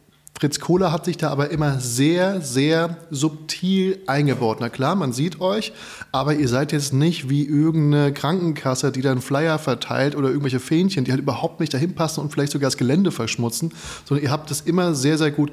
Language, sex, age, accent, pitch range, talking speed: German, male, 20-39, German, 130-155 Hz, 195 wpm